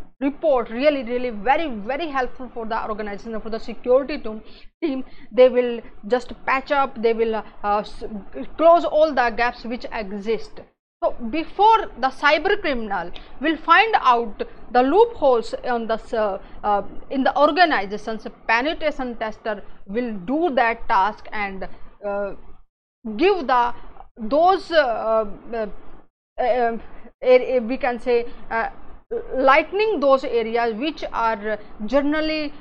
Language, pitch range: English, 215-275 Hz